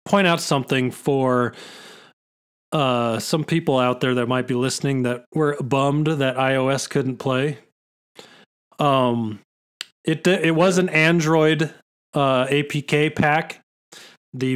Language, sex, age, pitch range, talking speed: English, male, 30-49, 130-165 Hz, 125 wpm